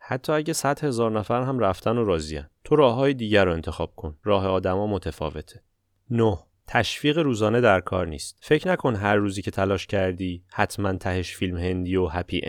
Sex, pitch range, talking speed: male, 95-115 Hz, 185 wpm